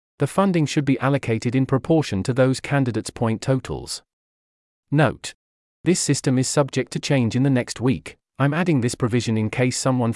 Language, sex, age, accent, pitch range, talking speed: English, male, 40-59, British, 105-145 Hz, 175 wpm